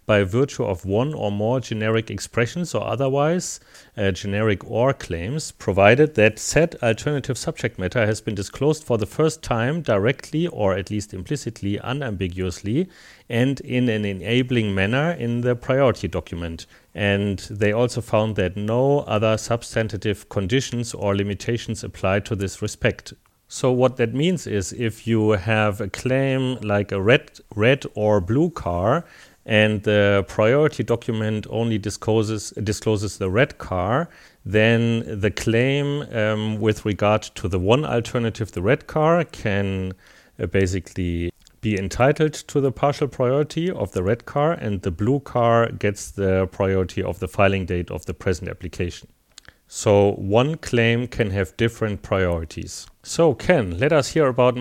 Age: 40-59